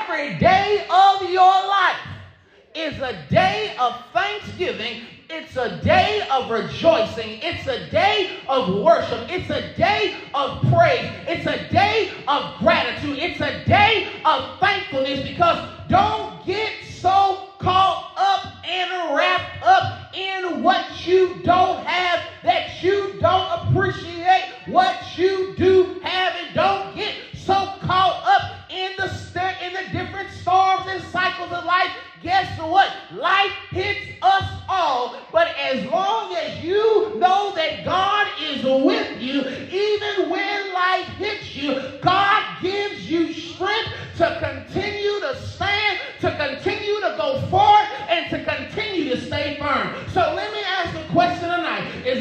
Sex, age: male, 40-59